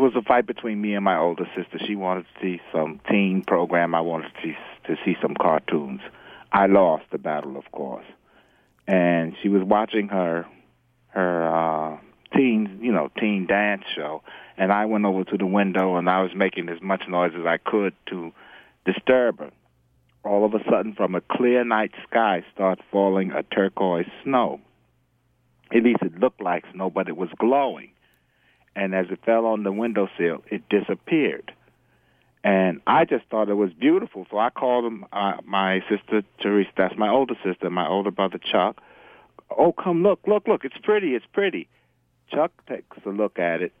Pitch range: 95-120 Hz